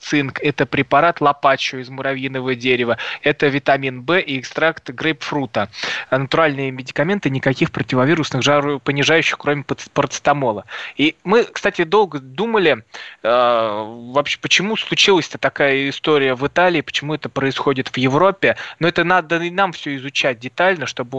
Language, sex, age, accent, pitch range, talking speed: Russian, male, 20-39, native, 130-150 Hz, 140 wpm